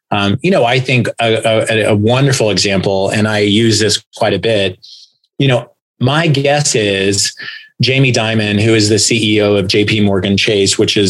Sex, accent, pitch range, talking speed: male, American, 100-120 Hz, 180 wpm